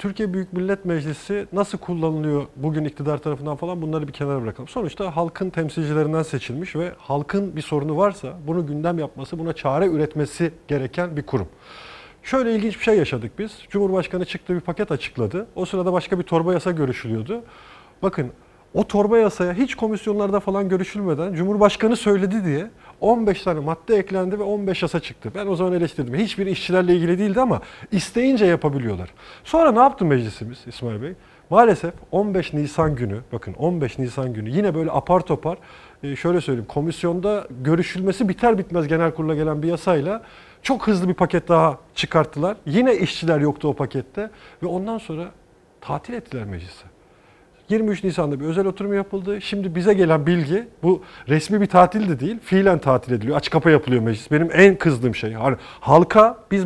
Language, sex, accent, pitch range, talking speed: Turkish, male, native, 150-200 Hz, 165 wpm